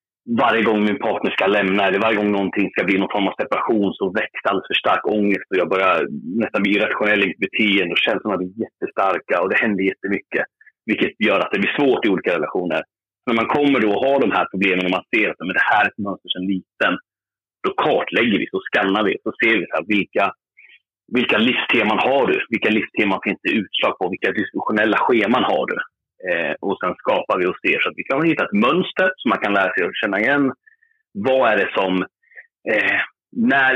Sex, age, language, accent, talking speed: male, 30-49, Swedish, native, 215 wpm